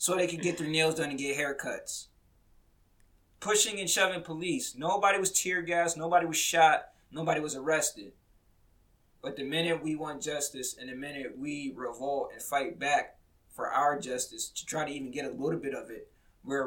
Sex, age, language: male, 20-39, English